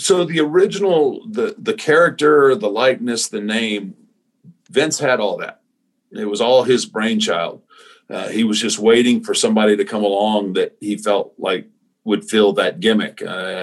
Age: 50-69